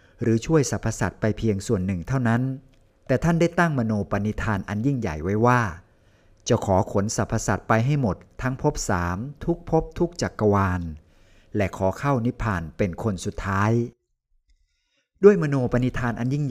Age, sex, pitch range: 60-79, male, 95-125 Hz